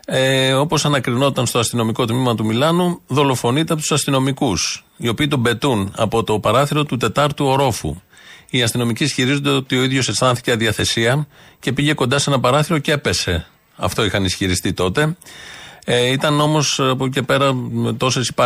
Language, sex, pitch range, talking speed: Greek, male, 110-140 Hz, 165 wpm